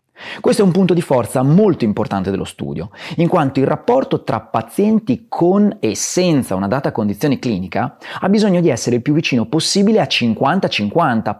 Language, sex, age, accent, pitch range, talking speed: Italian, male, 30-49, native, 115-185 Hz, 175 wpm